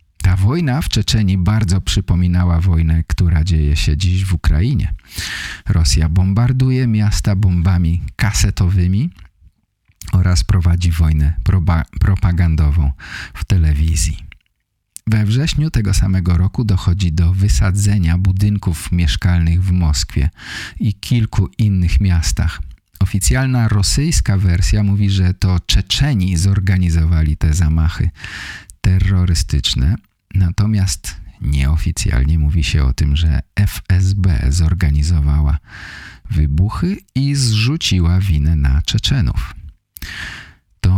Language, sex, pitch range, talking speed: English, male, 80-100 Hz, 100 wpm